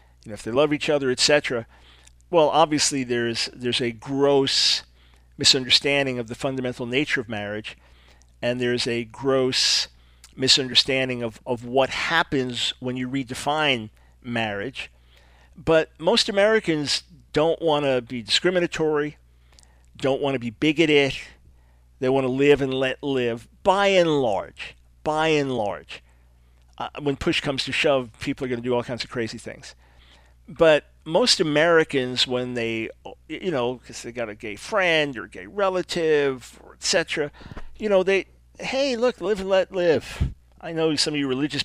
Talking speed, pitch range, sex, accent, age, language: 155 wpm, 110-150 Hz, male, American, 50-69, English